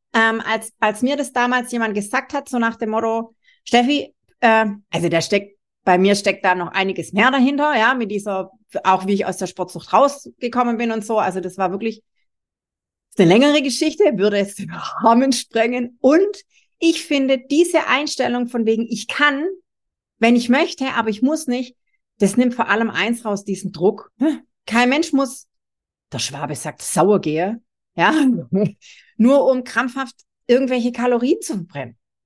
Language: German